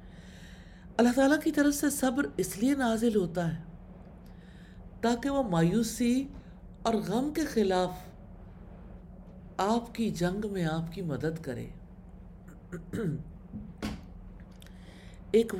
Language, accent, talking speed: English, Indian, 105 wpm